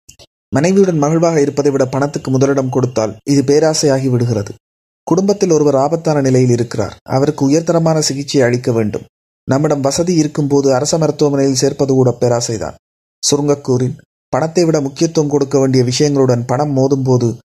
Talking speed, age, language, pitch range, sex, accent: 125 wpm, 30-49, Tamil, 120-145 Hz, male, native